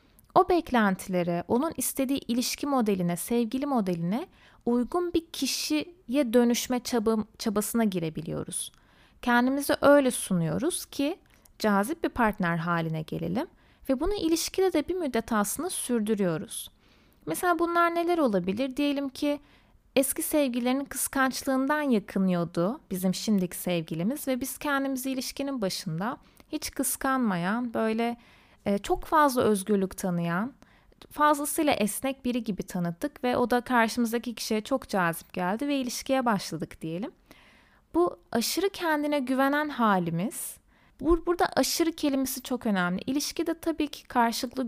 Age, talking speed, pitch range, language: 30-49, 120 wpm, 205-285 Hz, Turkish